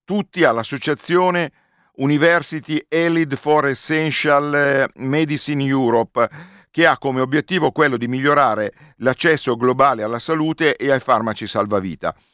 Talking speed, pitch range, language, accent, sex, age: 110 wpm, 115-160 Hz, Italian, native, male, 50-69